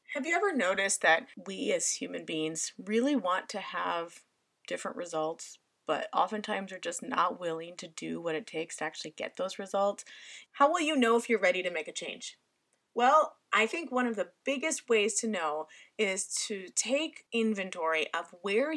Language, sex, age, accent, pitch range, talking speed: English, female, 30-49, American, 195-275 Hz, 185 wpm